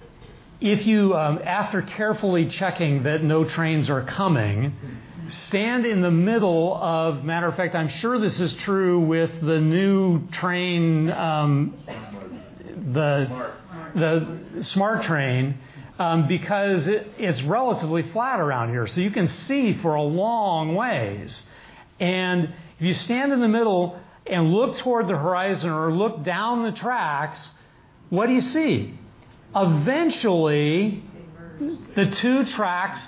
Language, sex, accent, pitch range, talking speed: English, male, American, 160-200 Hz, 135 wpm